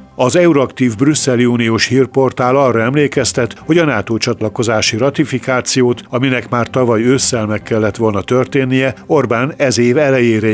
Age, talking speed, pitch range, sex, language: 60-79, 135 wpm, 110-130 Hz, male, Hungarian